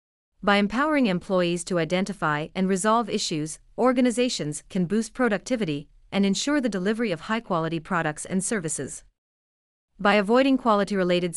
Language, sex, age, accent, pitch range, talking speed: English, female, 30-49, American, 160-215 Hz, 125 wpm